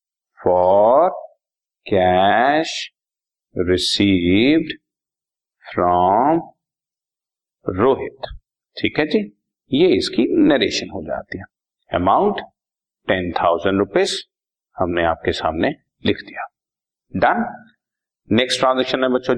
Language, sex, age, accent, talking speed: Hindi, male, 50-69, native, 85 wpm